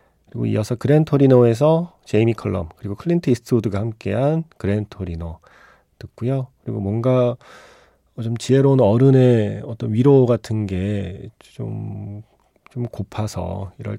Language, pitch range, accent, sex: Korean, 95-125 Hz, native, male